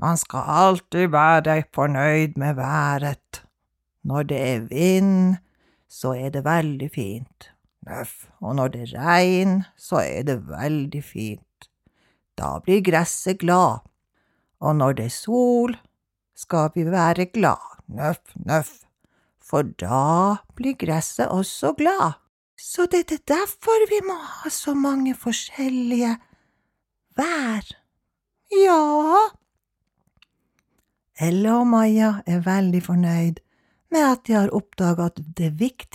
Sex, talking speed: female, 120 wpm